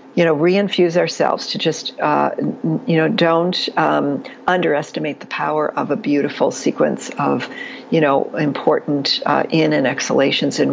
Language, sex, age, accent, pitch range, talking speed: English, female, 60-79, American, 160-210 Hz, 150 wpm